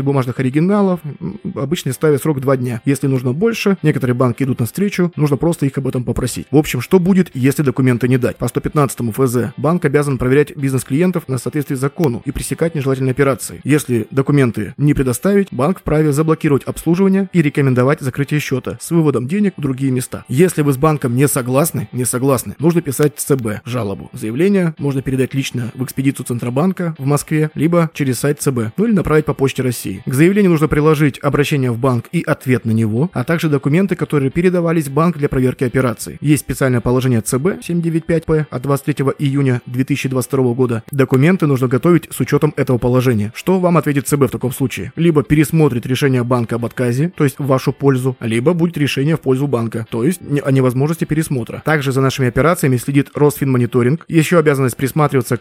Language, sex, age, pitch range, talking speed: Russian, male, 20-39, 125-155 Hz, 185 wpm